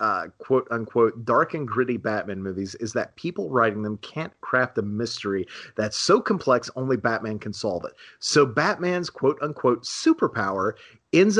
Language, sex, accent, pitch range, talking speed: English, male, American, 105-130 Hz, 155 wpm